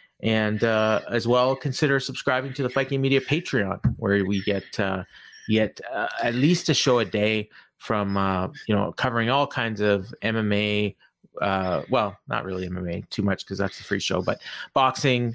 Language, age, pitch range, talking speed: English, 30-49, 100-125 Hz, 180 wpm